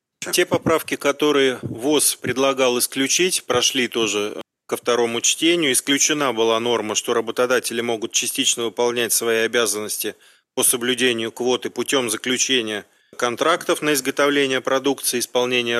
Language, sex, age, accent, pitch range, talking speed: Russian, male, 30-49, native, 115-135 Hz, 120 wpm